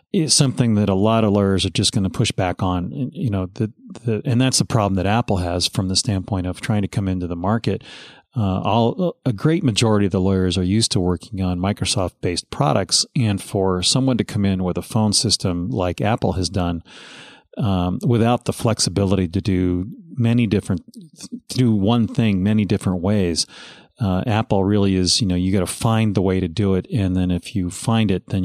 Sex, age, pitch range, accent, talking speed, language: male, 40-59, 95-115 Hz, American, 215 wpm, English